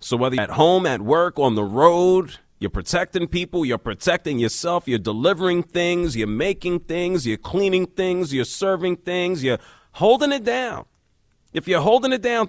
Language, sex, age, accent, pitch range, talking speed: English, male, 40-59, American, 110-170 Hz, 180 wpm